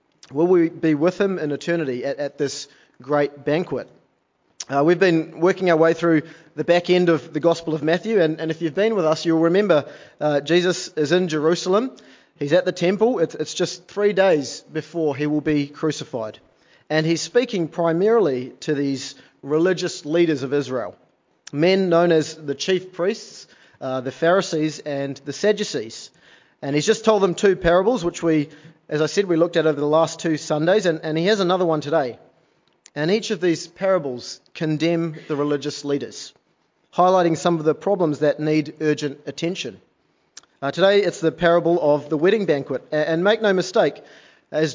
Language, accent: English, Australian